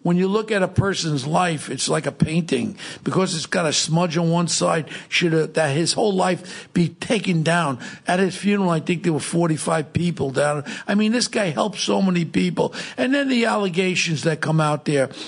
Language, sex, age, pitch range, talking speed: English, male, 60-79, 160-200 Hz, 210 wpm